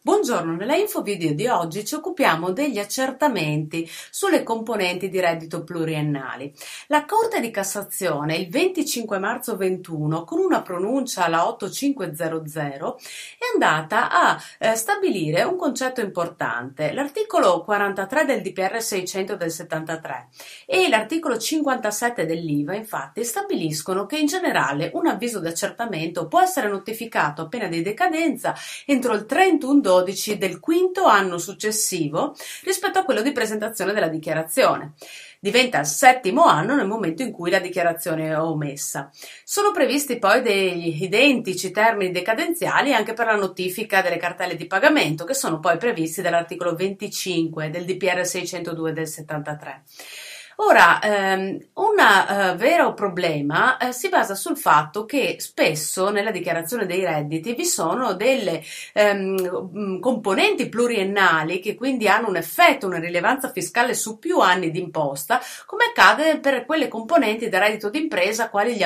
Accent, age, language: native, 30-49, Italian